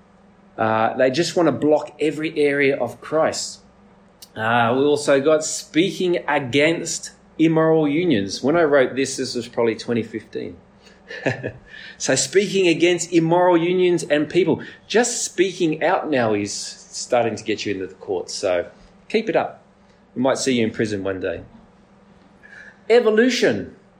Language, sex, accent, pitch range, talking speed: English, male, Australian, 120-150 Hz, 145 wpm